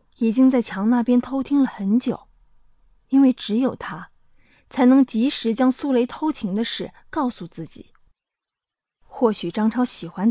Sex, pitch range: female, 215-270 Hz